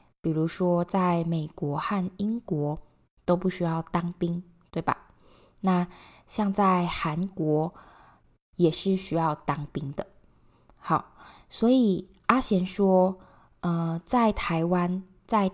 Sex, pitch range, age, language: female, 165-195 Hz, 20-39, Chinese